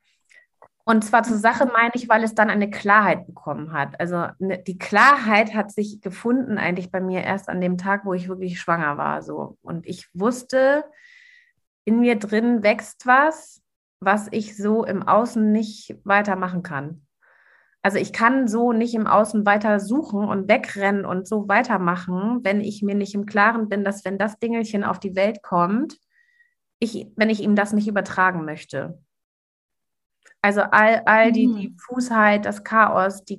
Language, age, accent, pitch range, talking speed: German, 30-49, German, 195-230 Hz, 165 wpm